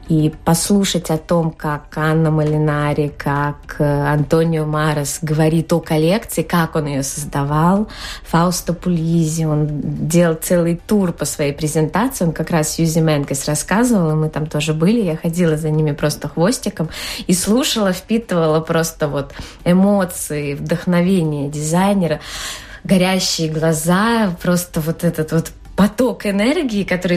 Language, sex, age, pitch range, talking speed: Russian, female, 20-39, 155-185 Hz, 135 wpm